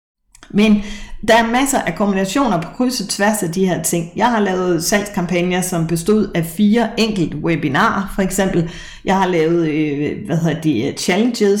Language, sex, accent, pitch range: Danish, female, native, 170-210 Hz